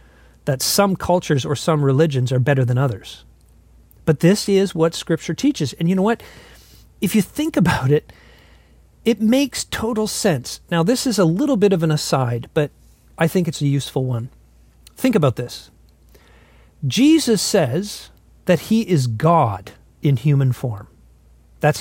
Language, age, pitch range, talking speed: English, 40-59, 125-190 Hz, 160 wpm